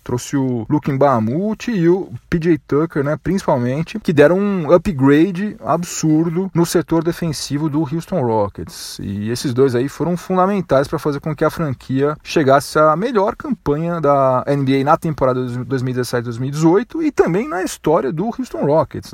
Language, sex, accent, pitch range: Portuguese, male, Brazilian, 130-190 Hz